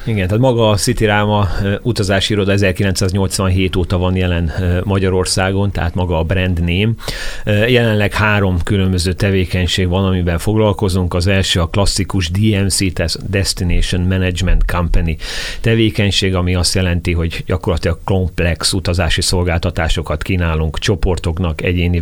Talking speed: 125 wpm